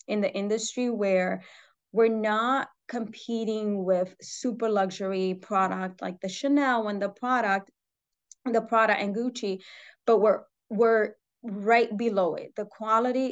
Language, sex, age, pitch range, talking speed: English, female, 20-39, 190-225 Hz, 130 wpm